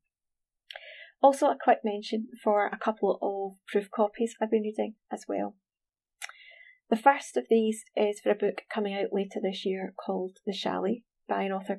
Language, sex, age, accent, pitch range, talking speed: English, female, 30-49, British, 205-255 Hz, 180 wpm